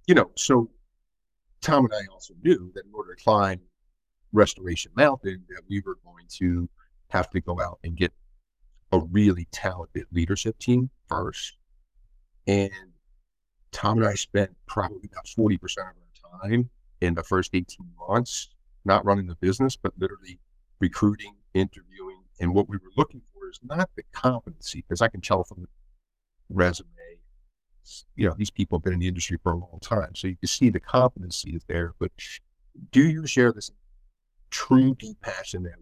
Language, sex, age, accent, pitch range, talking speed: English, male, 50-69, American, 90-110 Hz, 175 wpm